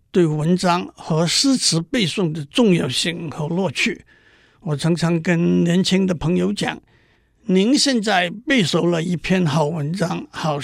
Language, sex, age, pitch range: Chinese, male, 60-79, 160-205 Hz